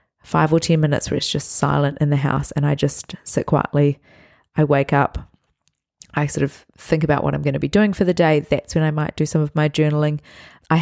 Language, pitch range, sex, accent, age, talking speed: English, 145-165 Hz, female, Australian, 20-39, 240 wpm